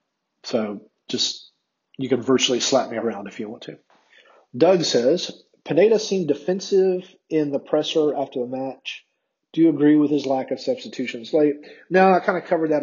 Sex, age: male, 40-59